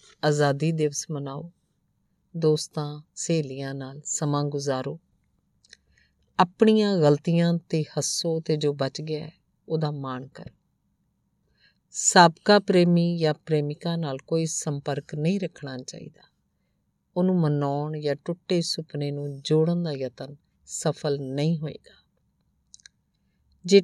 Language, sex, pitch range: Punjabi, female, 140-170 Hz